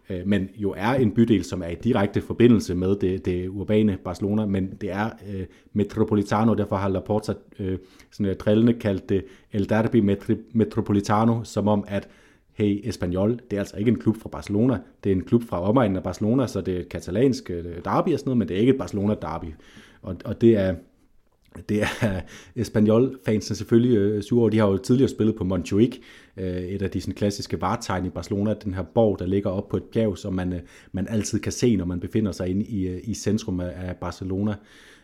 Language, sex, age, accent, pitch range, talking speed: Danish, male, 30-49, native, 95-115 Hz, 200 wpm